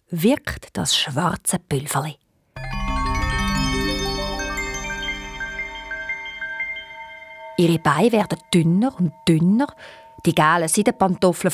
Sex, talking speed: female, 70 wpm